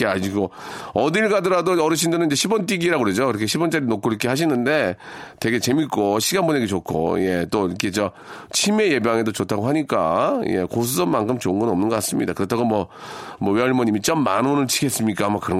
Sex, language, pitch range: male, Korean, 120-180 Hz